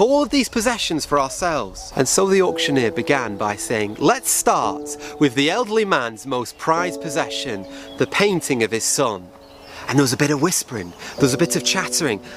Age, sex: 30-49, male